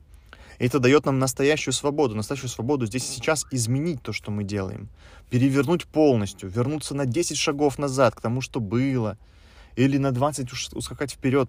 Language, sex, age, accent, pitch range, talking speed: Russian, male, 20-39, native, 90-125 Hz, 160 wpm